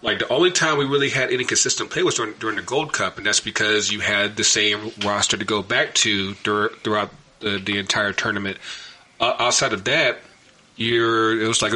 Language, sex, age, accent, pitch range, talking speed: English, male, 30-49, American, 105-115 Hz, 215 wpm